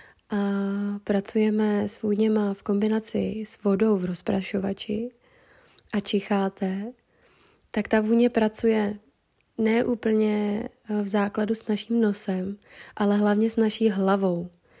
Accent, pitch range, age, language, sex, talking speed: native, 205-225 Hz, 20-39, Czech, female, 110 wpm